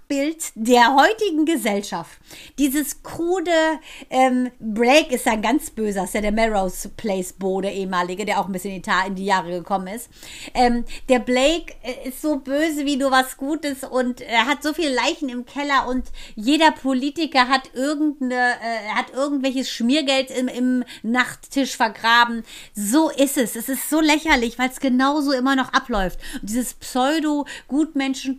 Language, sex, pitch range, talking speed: German, female, 235-285 Hz, 165 wpm